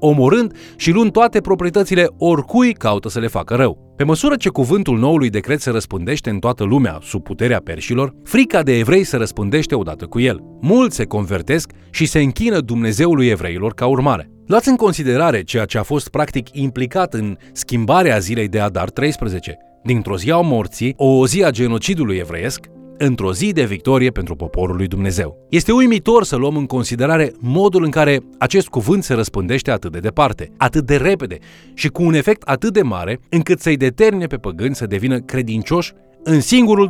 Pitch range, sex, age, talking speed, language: 110-170 Hz, male, 30-49, 180 wpm, Romanian